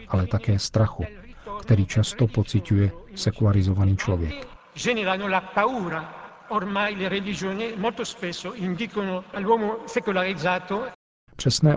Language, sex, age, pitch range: Czech, male, 50-69, 100-125 Hz